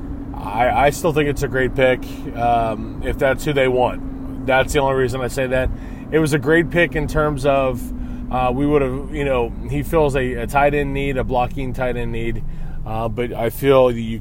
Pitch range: 115-145 Hz